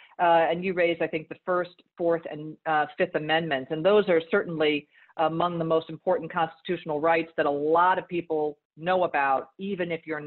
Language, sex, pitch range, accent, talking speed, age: English, female, 155-185 Hz, American, 195 wpm, 50-69